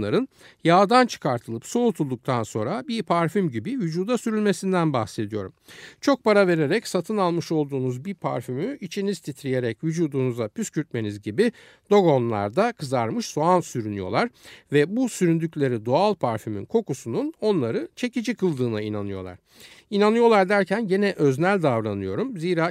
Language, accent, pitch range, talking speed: Turkish, native, 120-195 Hz, 115 wpm